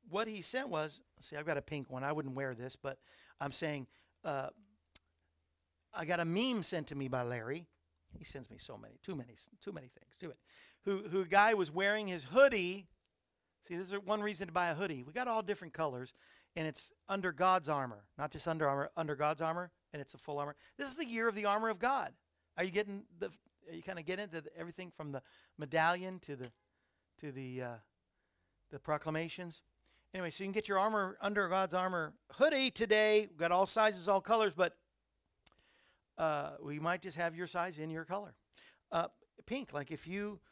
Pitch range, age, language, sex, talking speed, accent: 150-200 Hz, 50-69, English, male, 210 wpm, American